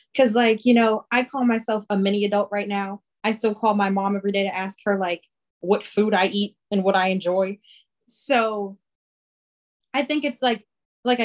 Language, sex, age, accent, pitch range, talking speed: English, female, 20-39, American, 190-260 Hz, 195 wpm